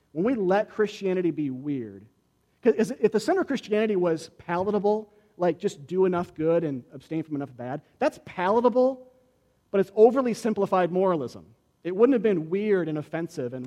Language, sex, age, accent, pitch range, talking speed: English, male, 40-59, American, 130-185 Hz, 170 wpm